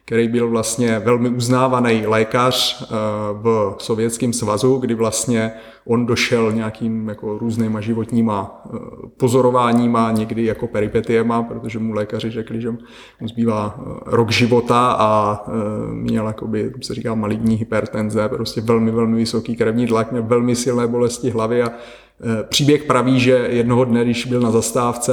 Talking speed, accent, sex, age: 145 wpm, native, male, 30-49